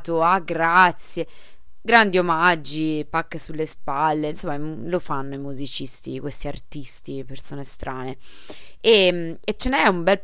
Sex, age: female, 20-39